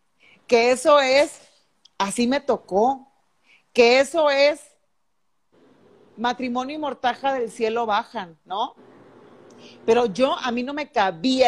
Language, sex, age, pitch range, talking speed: Spanish, female, 40-59, 225-285 Hz, 120 wpm